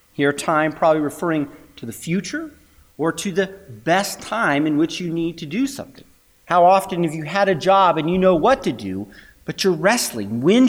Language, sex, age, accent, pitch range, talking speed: English, male, 40-59, American, 135-215 Hz, 200 wpm